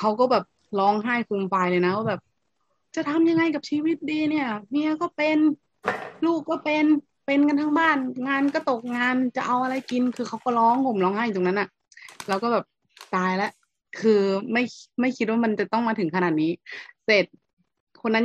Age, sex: 20-39, female